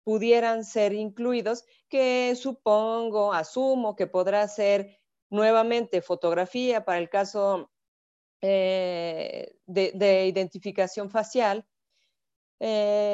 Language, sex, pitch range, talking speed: Spanish, female, 190-235 Hz, 90 wpm